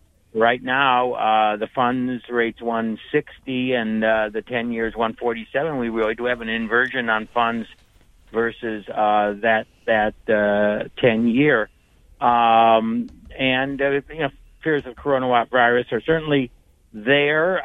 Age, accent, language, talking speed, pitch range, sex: 60-79, American, English, 135 wpm, 110-140 Hz, male